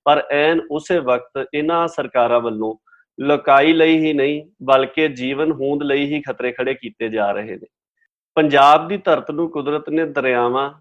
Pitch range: 130-155 Hz